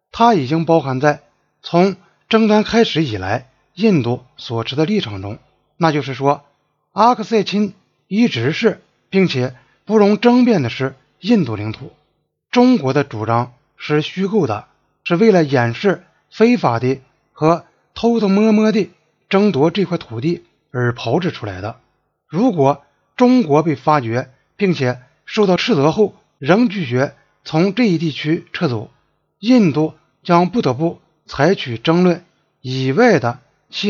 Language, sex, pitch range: Chinese, male, 130-195 Hz